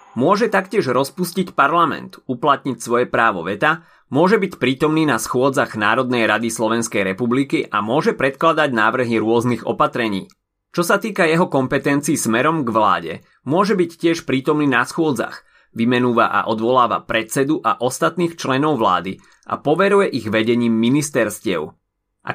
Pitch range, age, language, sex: 115-150 Hz, 30-49, Slovak, male